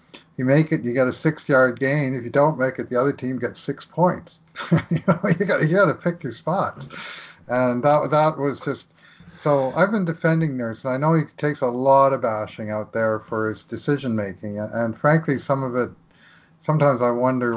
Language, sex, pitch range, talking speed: English, male, 115-155 Hz, 210 wpm